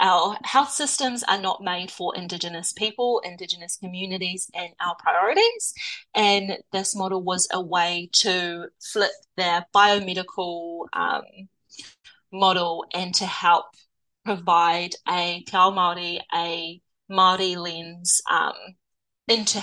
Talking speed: 115 wpm